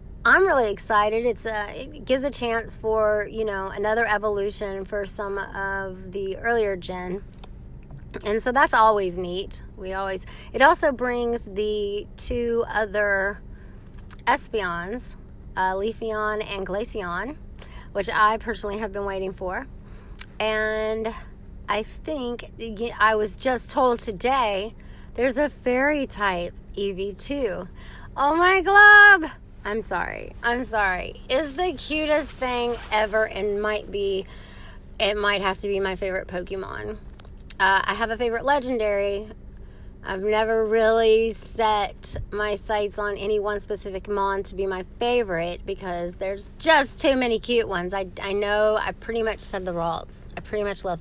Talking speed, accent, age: 145 wpm, American, 20-39